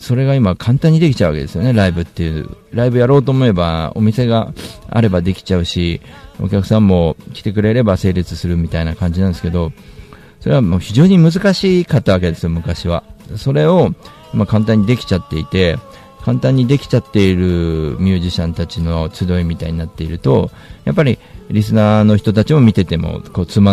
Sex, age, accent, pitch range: male, 50-69, native, 85-120 Hz